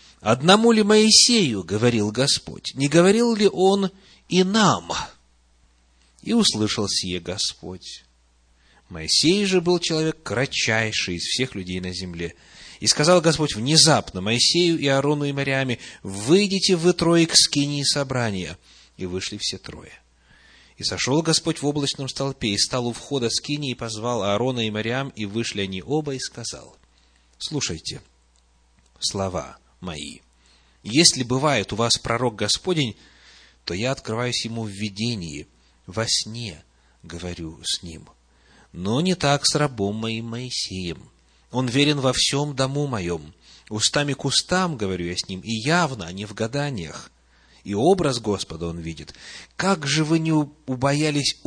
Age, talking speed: 30-49, 145 wpm